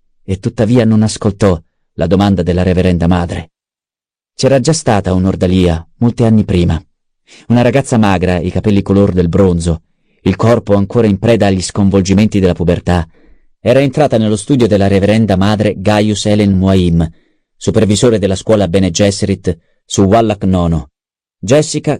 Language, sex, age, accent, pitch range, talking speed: Italian, male, 40-59, native, 85-110 Hz, 140 wpm